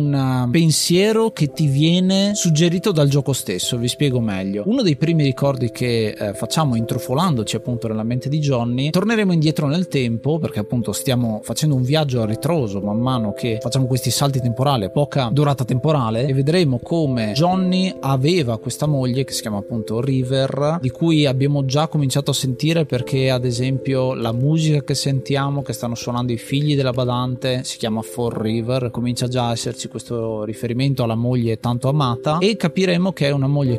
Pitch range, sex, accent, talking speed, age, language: 120-145 Hz, male, native, 175 wpm, 30-49, Italian